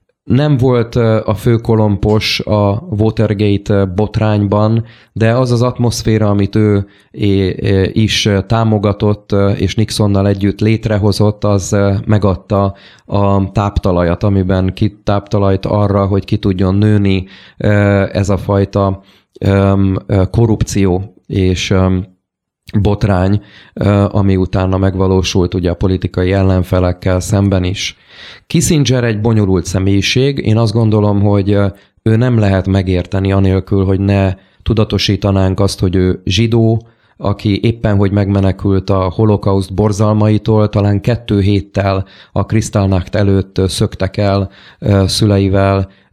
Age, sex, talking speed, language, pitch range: 30-49, male, 105 wpm, Hungarian, 95-110 Hz